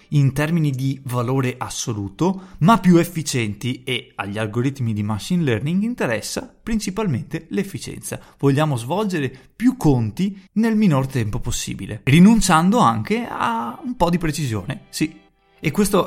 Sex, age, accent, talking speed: male, 30-49, native, 130 wpm